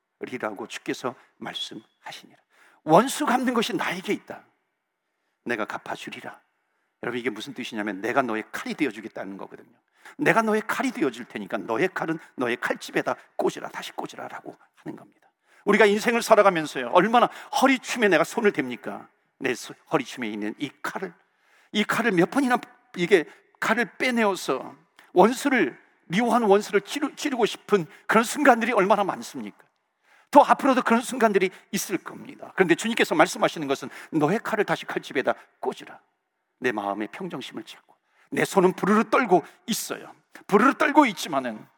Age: 50-69